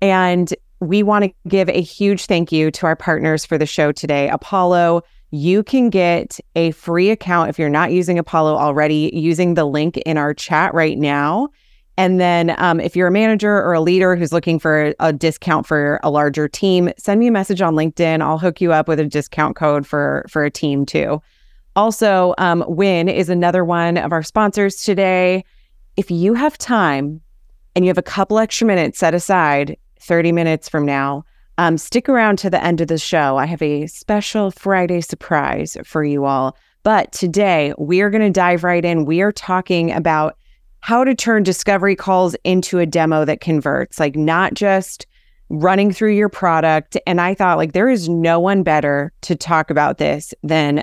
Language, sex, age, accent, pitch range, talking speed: English, female, 30-49, American, 155-190 Hz, 190 wpm